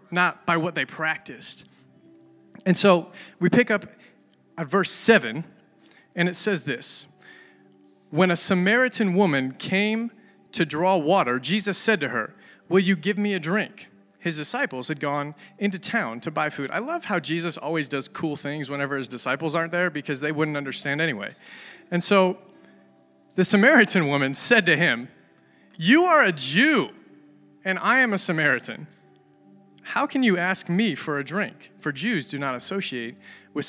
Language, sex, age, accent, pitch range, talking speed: English, male, 30-49, American, 140-200 Hz, 165 wpm